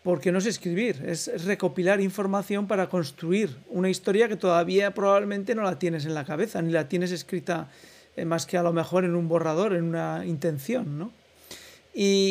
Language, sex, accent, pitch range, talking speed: Spanish, male, Spanish, 175-205 Hz, 175 wpm